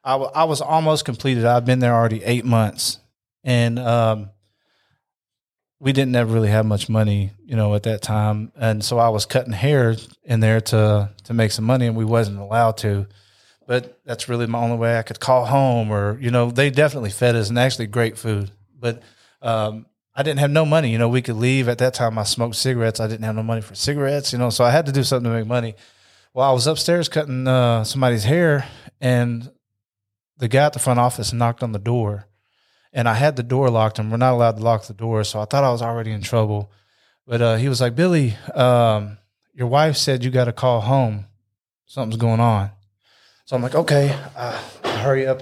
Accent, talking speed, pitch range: American, 220 wpm, 110-130 Hz